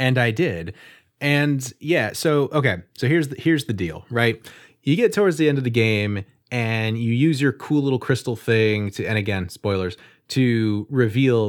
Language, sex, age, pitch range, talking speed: English, male, 30-49, 100-135 Hz, 190 wpm